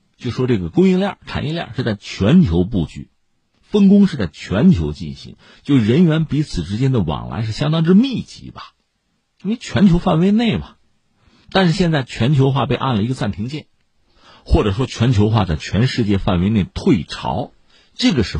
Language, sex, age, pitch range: Chinese, male, 50-69, 85-140 Hz